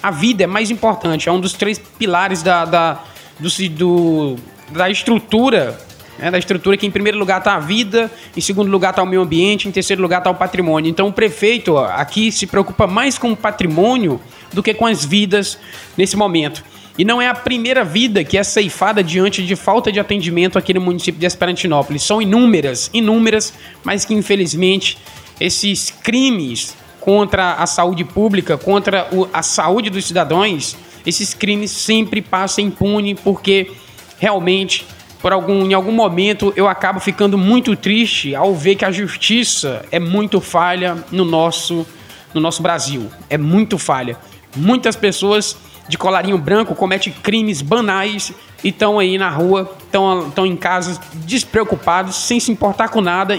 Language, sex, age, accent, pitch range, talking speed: Portuguese, male, 20-39, Brazilian, 180-210 Hz, 165 wpm